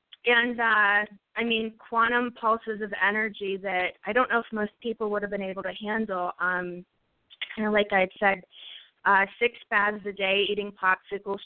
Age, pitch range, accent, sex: 20-39, 195-225 Hz, American, female